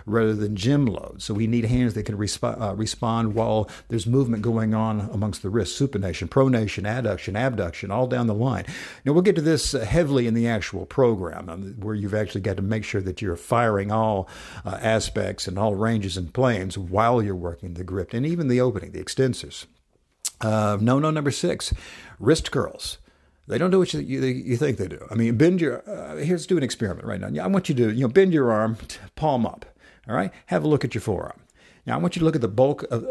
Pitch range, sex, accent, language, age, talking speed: 105-140 Hz, male, American, English, 60-79, 230 wpm